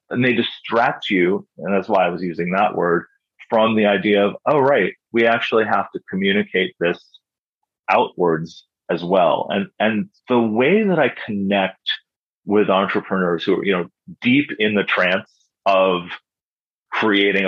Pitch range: 95-115 Hz